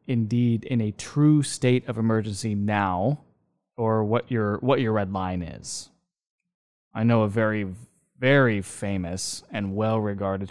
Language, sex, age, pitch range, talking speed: English, male, 20-39, 100-120 Hz, 135 wpm